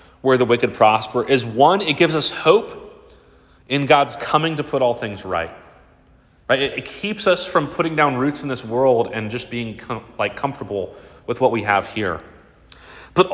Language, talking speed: English, 185 wpm